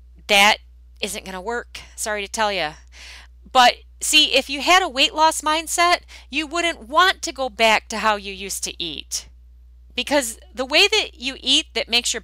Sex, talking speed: female, 190 wpm